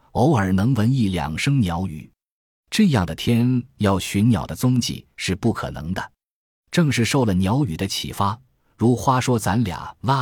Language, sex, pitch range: Chinese, male, 90-115 Hz